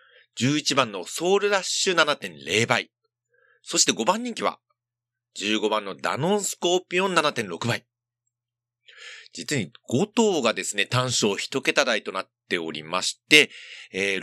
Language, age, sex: Japanese, 40-59, male